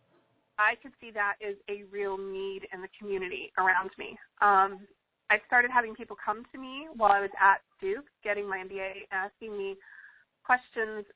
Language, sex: English, female